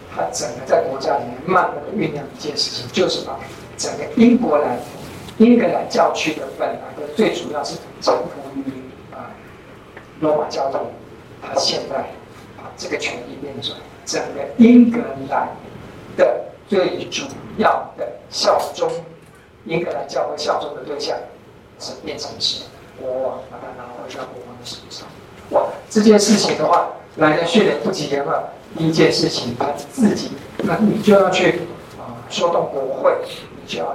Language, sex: Chinese, male